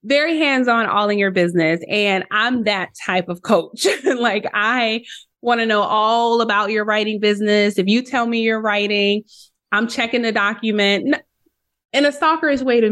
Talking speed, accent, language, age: 175 wpm, American, English, 20-39